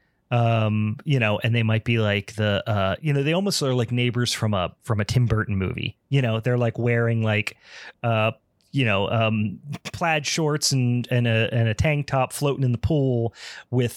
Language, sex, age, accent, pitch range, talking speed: English, male, 30-49, American, 110-135 Hz, 205 wpm